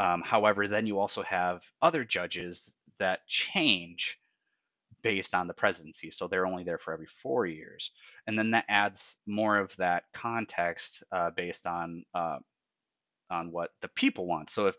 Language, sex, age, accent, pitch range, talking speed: English, male, 30-49, American, 85-105 Hz, 165 wpm